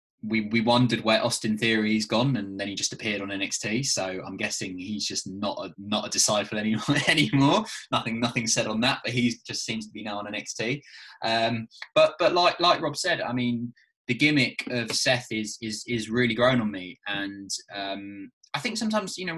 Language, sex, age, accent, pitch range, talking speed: English, male, 20-39, British, 100-125 Hz, 210 wpm